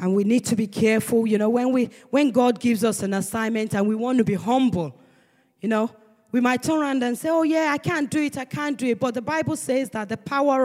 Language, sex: English, female